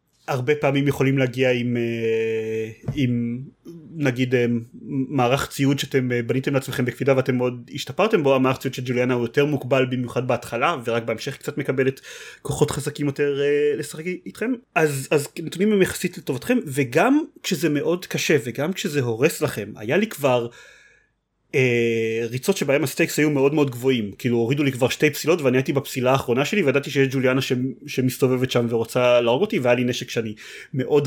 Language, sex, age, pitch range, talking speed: Hebrew, male, 30-49, 125-150 Hz, 160 wpm